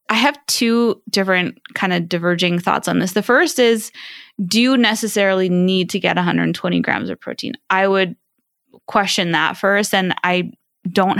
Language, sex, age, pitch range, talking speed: English, female, 20-39, 175-220 Hz, 165 wpm